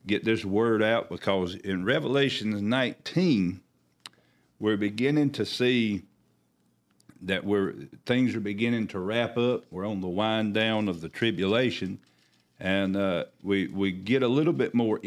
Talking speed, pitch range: 145 wpm, 95-120 Hz